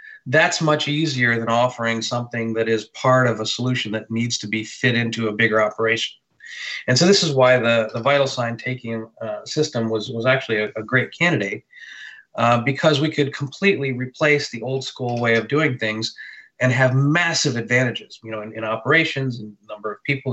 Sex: male